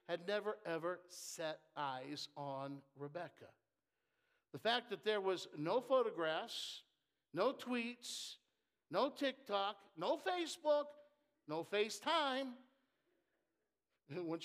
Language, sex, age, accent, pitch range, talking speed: English, male, 60-79, American, 150-240 Hz, 95 wpm